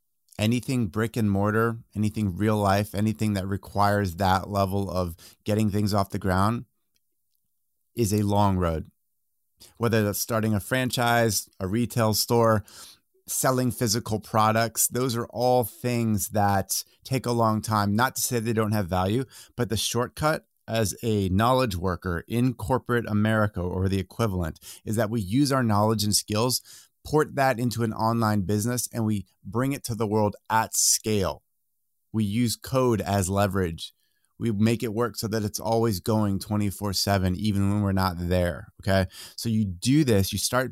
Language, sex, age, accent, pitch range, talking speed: English, male, 30-49, American, 100-120 Hz, 165 wpm